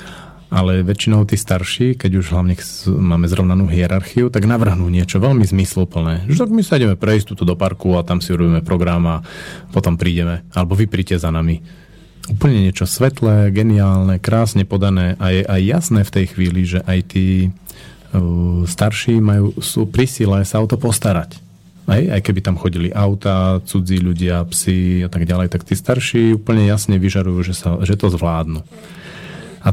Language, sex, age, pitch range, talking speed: Slovak, male, 30-49, 90-110 Hz, 170 wpm